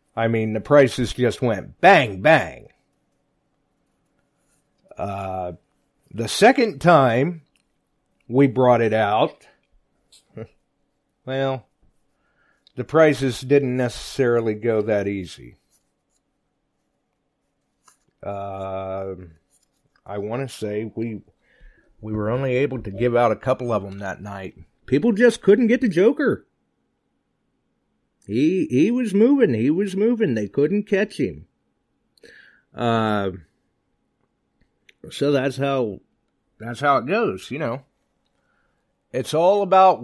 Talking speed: 110 wpm